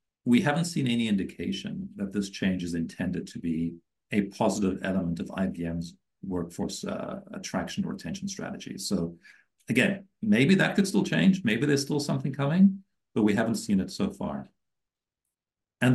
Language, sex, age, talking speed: English, male, 50-69, 160 wpm